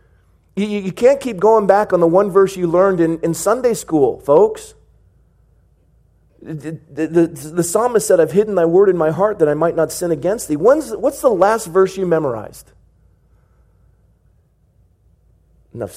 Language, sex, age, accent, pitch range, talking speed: English, male, 40-59, American, 135-175 Hz, 155 wpm